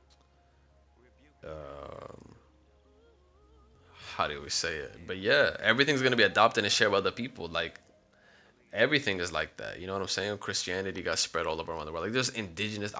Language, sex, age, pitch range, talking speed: English, male, 20-39, 85-105 Hz, 175 wpm